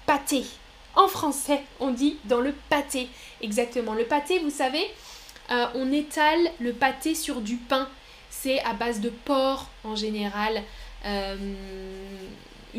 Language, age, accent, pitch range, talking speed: French, 10-29, French, 225-300 Hz, 135 wpm